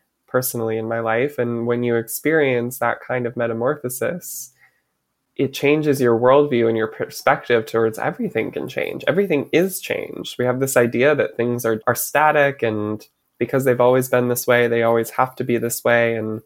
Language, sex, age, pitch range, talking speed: English, male, 20-39, 115-125 Hz, 180 wpm